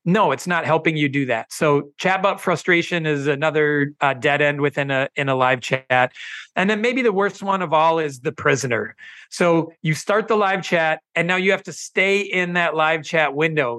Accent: American